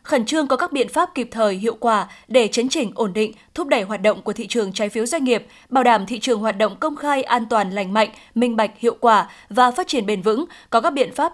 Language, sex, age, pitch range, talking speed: Vietnamese, female, 10-29, 220-275 Hz, 270 wpm